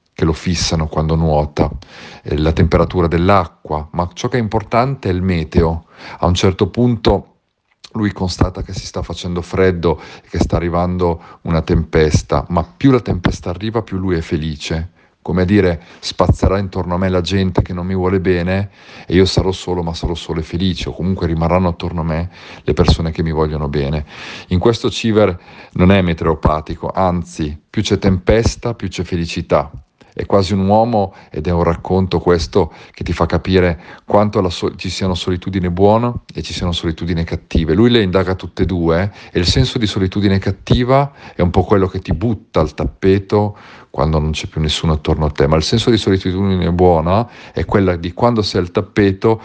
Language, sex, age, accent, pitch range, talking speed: Italian, male, 40-59, native, 85-100 Hz, 190 wpm